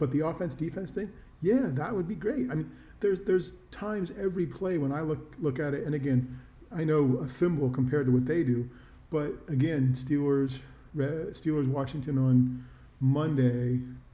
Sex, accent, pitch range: male, American, 130-165 Hz